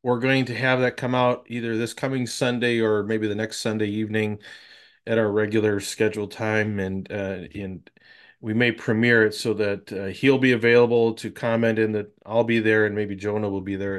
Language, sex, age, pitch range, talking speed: English, male, 30-49, 105-125 Hz, 205 wpm